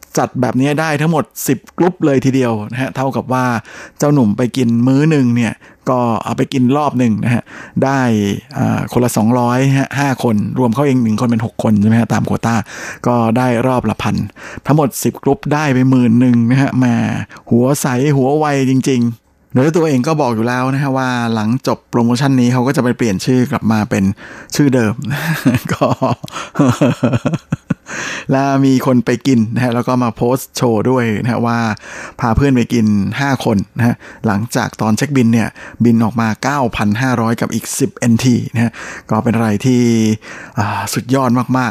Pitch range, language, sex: 115-130 Hz, Thai, male